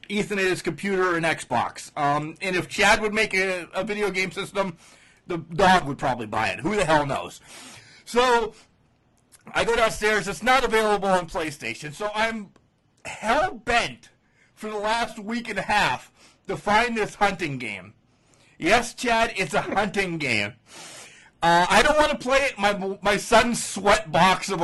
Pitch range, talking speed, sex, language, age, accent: 165-225 Hz, 175 wpm, male, English, 40-59, American